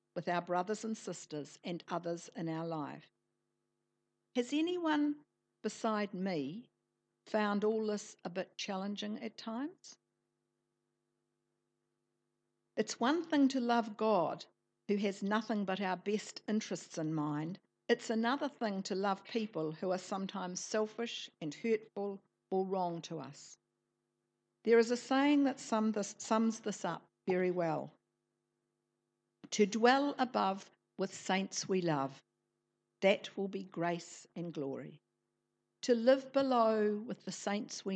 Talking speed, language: 130 wpm, English